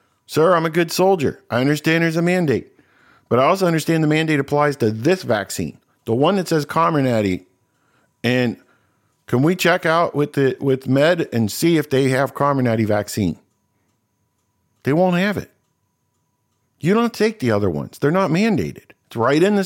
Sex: male